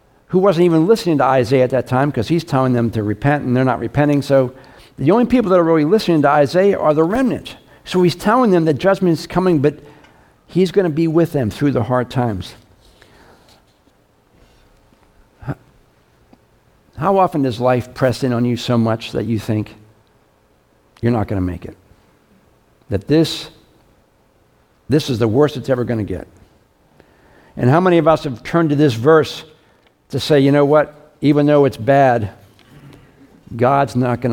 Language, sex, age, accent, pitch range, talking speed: English, male, 60-79, American, 115-165 Hz, 180 wpm